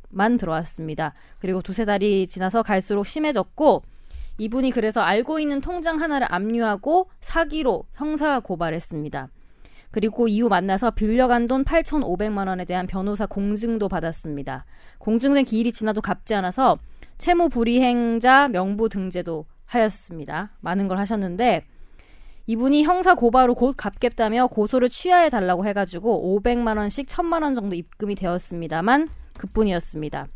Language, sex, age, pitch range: Korean, female, 20-39, 190-260 Hz